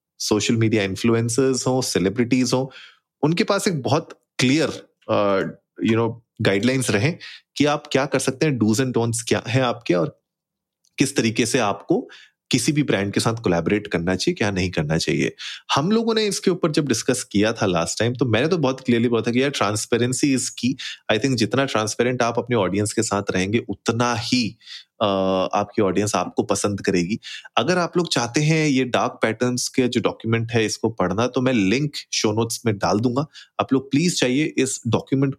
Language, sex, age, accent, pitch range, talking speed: Hindi, male, 30-49, native, 105-135 Hz, 185 wpm